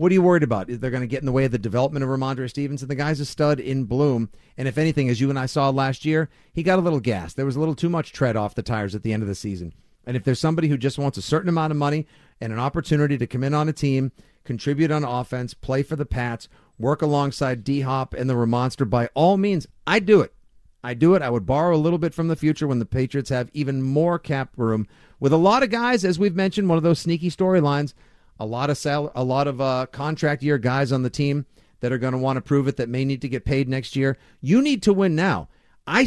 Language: English